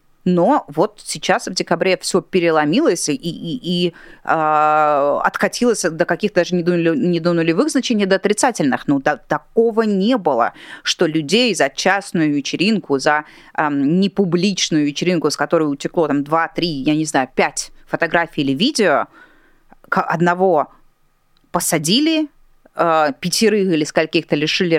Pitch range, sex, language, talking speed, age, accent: 145-175 Hz, female, Russian, 130 wpm, 30-49, native